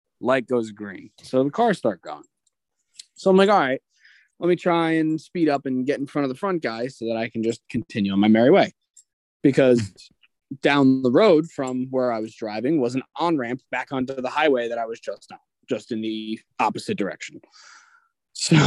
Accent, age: American, 20-39